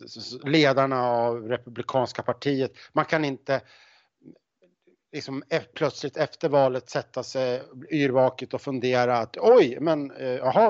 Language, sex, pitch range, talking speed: Swedish, male, 125-155 Hz, 110 wpm